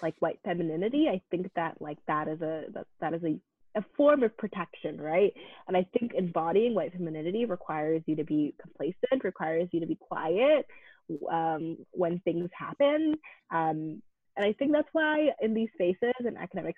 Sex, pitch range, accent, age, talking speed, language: female, 170-225 Hz, American, 20-39, 180 wpm, English